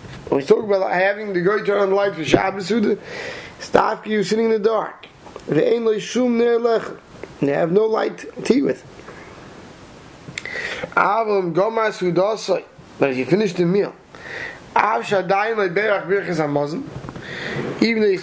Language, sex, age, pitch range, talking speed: English, male, 20-39, 175-220 Hz, 90 wpm